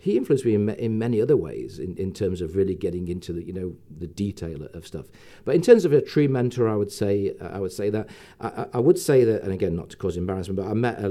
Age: 40-59